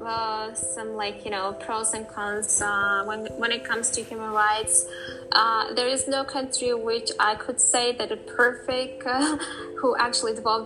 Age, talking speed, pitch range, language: 10-29, 180 wpm, 210-255 Hz, English